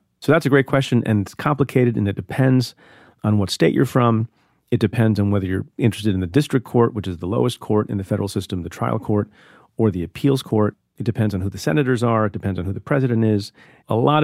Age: 40-59